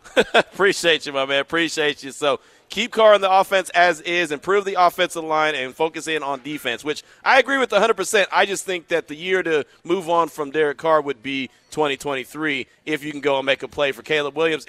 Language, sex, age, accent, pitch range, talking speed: English, male, 40-59, American, 140-185 Hz, 220 wpm